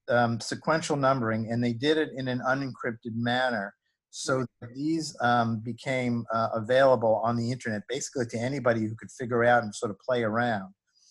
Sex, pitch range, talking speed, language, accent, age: male, 115-140 Hz, 175 wpm, English, American, 50-69